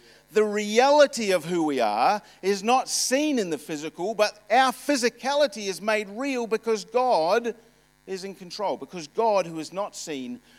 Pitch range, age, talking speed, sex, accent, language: 160-225 Hz, 50-69, 165 wpm, male, Australian, English